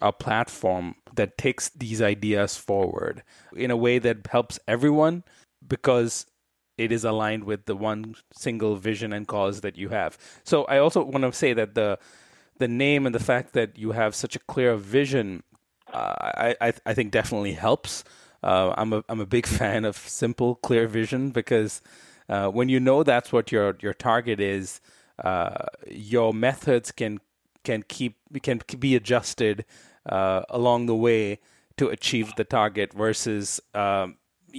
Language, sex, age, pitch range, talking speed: English, male, 30-49, 100-120 Hz, 165 wpm